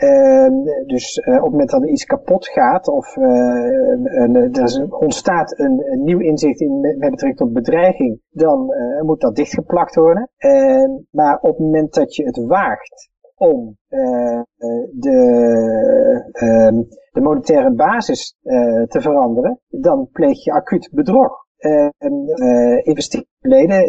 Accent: Dutch